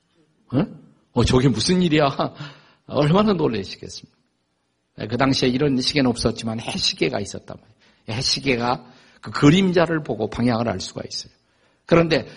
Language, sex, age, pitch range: Korean, male, 50-69, 120-185 Hz